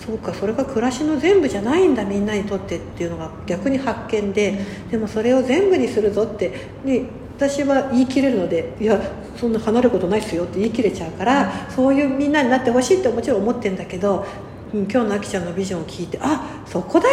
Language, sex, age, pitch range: Japanese, female, 60-79, 185-255 Hz